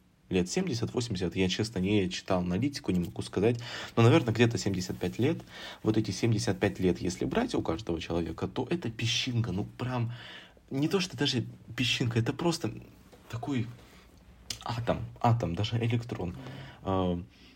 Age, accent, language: 20-39, native, Russian